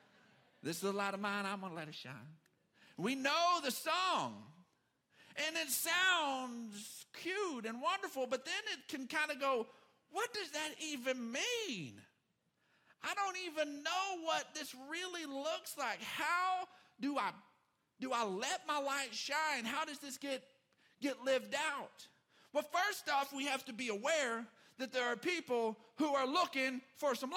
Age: 50-69